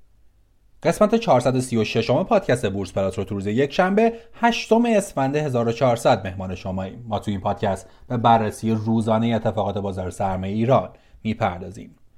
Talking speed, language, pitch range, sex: 130 wpm, Persian, 110-185 Hz, male